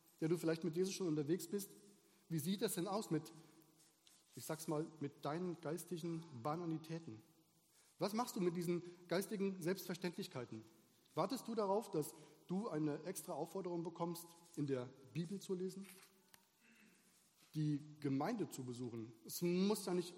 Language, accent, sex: German, German, male